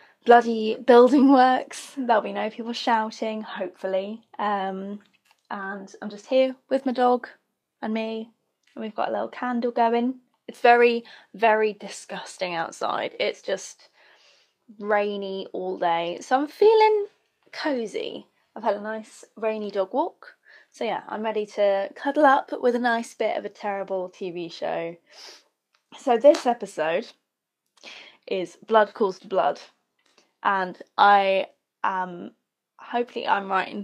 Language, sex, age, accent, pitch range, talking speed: English, female, 10-29, British, 190-245 Hz, 140 wpm